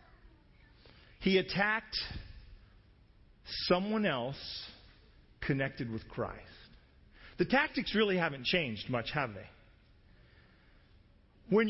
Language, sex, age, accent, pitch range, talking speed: English, male, 40-59, American, 135-210 Hz, 80 wpm